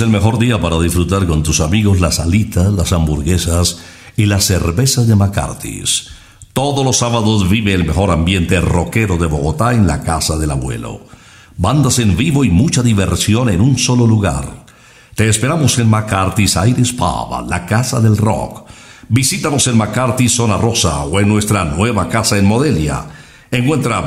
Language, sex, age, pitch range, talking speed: Spanish, male, 60-79, 85-120 Hz, 160 wpm